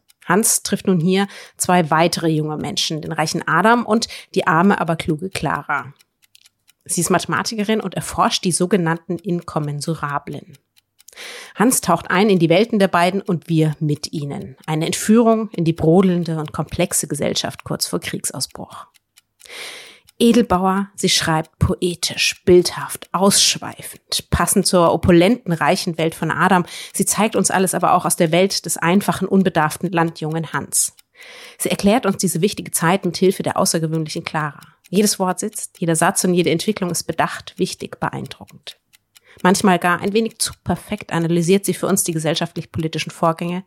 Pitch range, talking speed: 165-195 Hz, 155 wpm